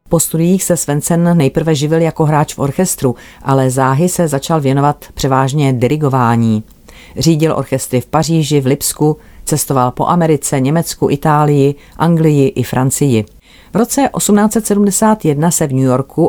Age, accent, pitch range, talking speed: 40-59, native, 130-160 Hz, 140 wpm